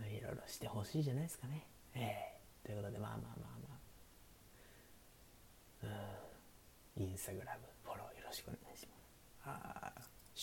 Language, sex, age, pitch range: Japanese, male, 30-49, 100-135 Hz